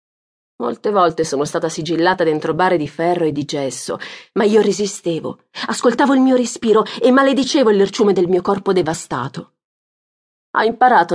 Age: 40-59